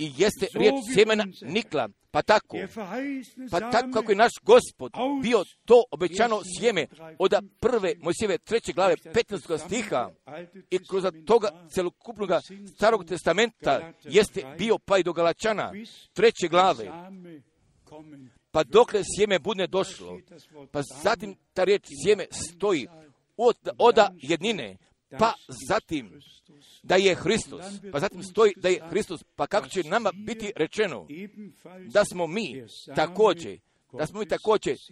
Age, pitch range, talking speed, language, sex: 50-69, 170-220 Hz, 135 wpm, Croatian, male